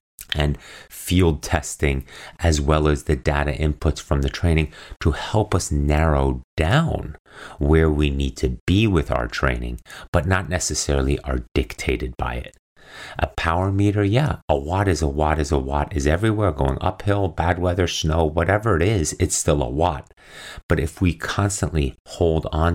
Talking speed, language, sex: 170 wpm, English, male